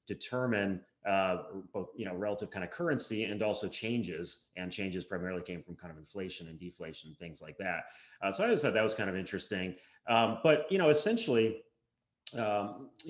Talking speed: 190 wpm